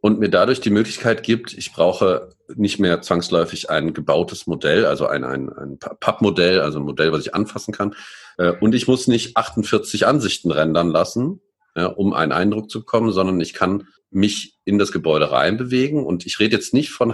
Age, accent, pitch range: 40-59, German, 85-115 Hz